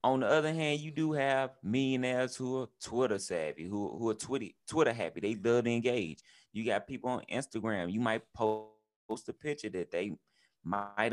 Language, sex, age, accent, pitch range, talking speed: English, male, 30-49, American, 110-145 Hz, 185 wpm